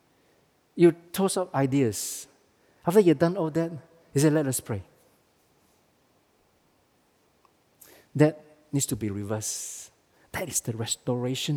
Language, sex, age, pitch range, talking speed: English, male, 50-69, 135-180 Hz, 120 wpm